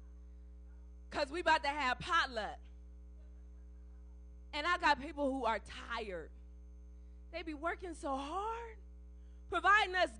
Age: 20-39